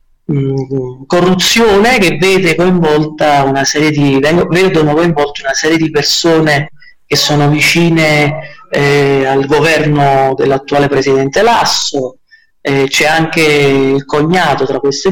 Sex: male